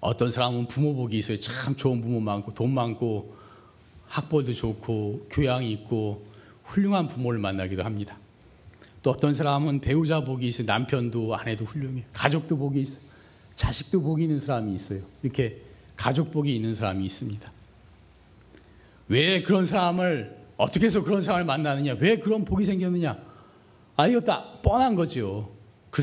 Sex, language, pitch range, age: male, Korean, 105-155 Hz, 40-59